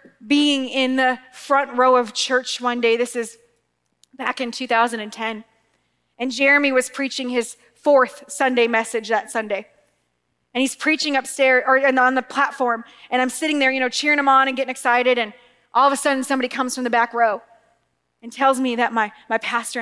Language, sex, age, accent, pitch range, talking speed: English, female, 20-39, American, 225-265 Hz, 190 wpm